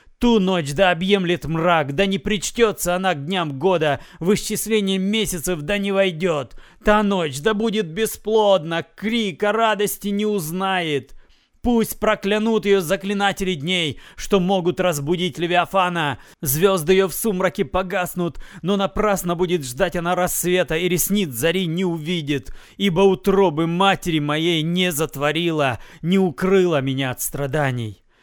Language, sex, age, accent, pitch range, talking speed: Russian, male, 30-49, native, 170-210 Hz, 135 wpm